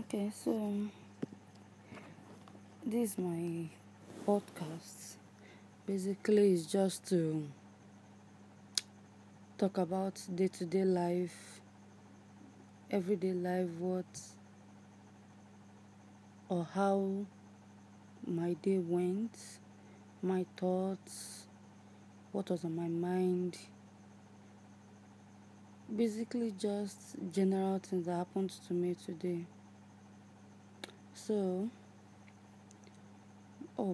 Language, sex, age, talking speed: English, female, 20-39, 70 wpm